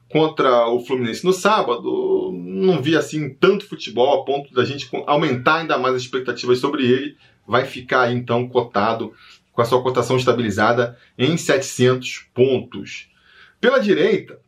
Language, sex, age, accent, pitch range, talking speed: Portuguese, male, 20-39, Brazilian, 120-170 Hz, 145 wpm